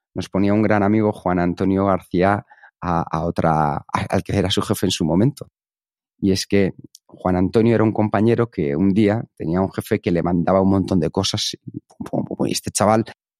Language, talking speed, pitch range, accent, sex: Spanish, 195 wpm, 95-125 Hz, Spanish, male